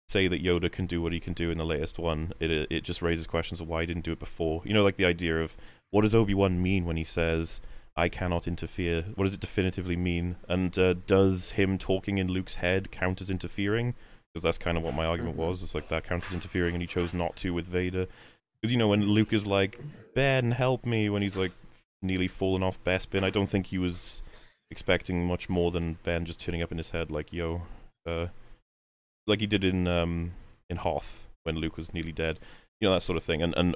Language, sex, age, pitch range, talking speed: English, male, 20-39, 85-105 Hz, 240 wpm